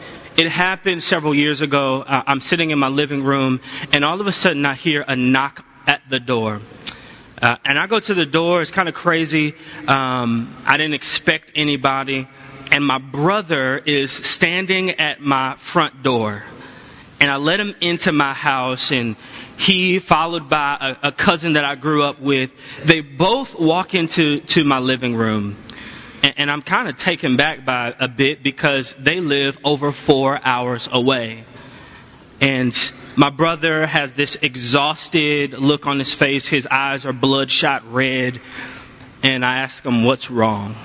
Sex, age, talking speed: male, 20-39, 165 wpm